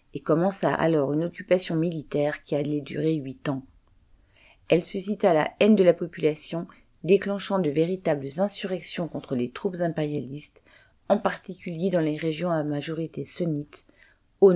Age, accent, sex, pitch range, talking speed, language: 40-59, French, female, 145-180 Hz, 145 wpm, French